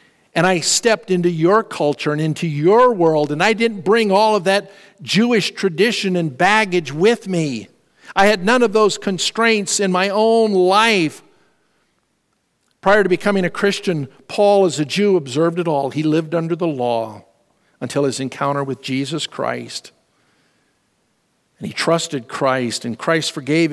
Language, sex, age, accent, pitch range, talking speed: English, male, 50-69, American, 140-200 Hz, 160 wpm